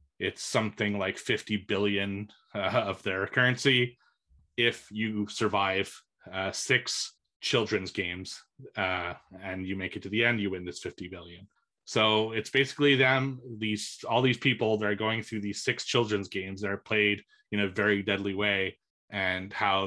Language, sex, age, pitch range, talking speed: English, male, 30-49, 105-125 Hz, 165 wpm